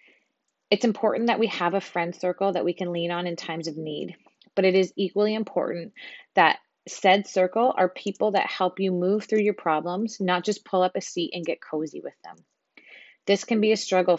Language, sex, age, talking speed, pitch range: English, female, 30-49, 210 wpm, 170-205 Hz